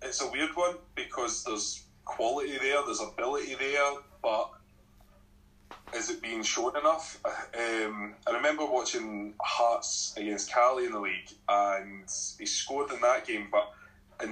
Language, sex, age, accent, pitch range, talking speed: English, male, 20-39, British, 105-155 Hz, 145 wpm